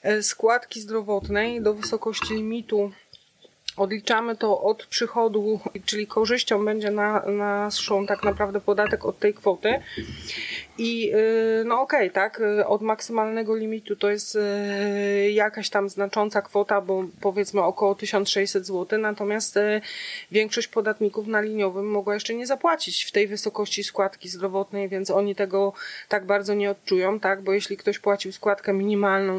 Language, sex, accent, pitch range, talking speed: Polish, female, native, 195-215 Hz, 135 wpm